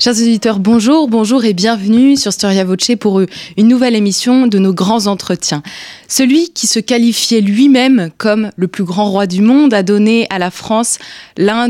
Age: 20-39